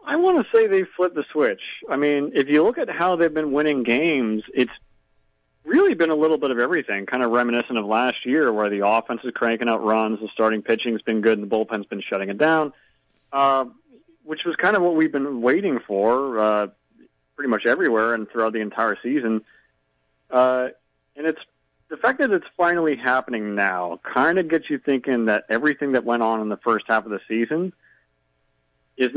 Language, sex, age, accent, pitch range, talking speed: English, male, 40-59, American, 105-135 Hz, 205 wpm